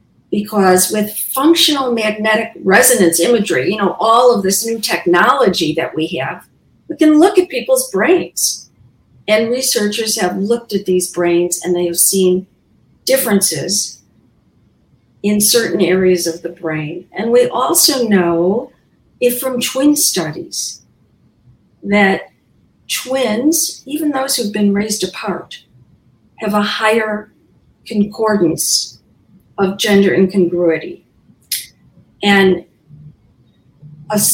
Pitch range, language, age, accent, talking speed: 180-230 Hz, English, 50-69, American, 115 wpm